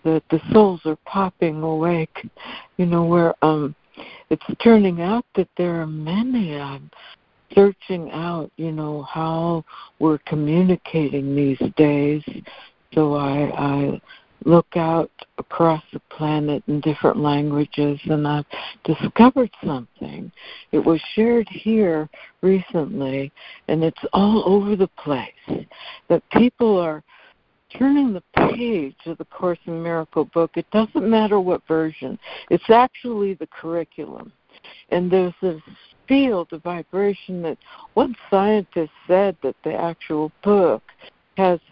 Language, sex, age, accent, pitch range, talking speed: English, female, 60-79, American, 155-195 Hz, 130 wpm